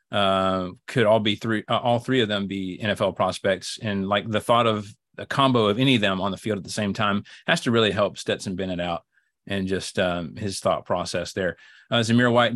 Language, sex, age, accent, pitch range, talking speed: English, male, 30-49, American, 100-120 Hz, 230 wpm